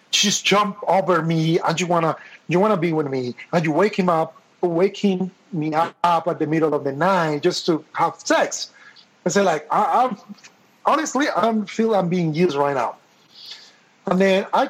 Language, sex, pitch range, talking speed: English, male, 145-185 Hz, 205 wpm